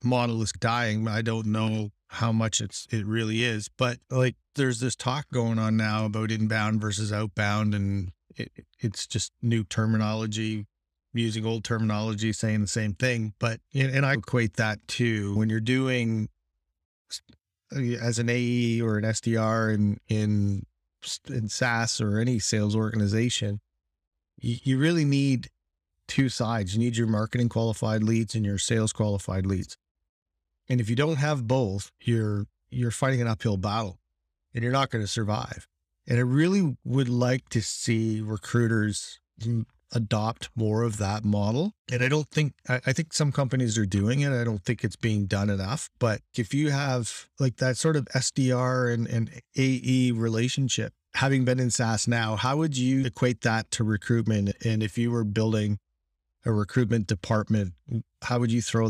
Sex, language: male, English